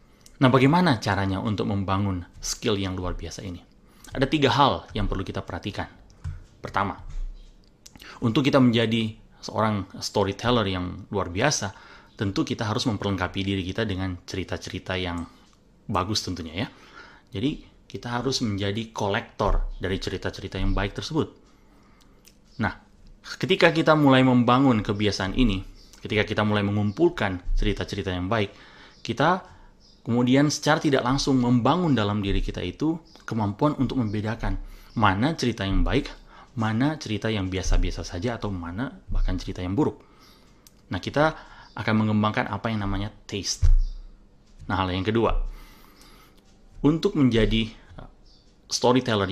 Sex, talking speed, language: male, 130 wpm, Indonesian